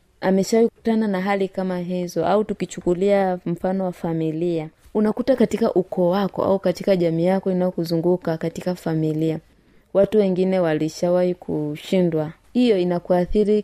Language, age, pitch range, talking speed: Swahili, 20-39, 170-195 Hz, 125 wpm